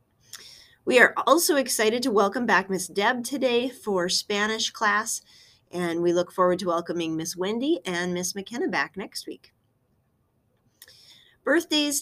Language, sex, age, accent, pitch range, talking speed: English, female, 30-49, American, 165-225 Hz, 140 wpm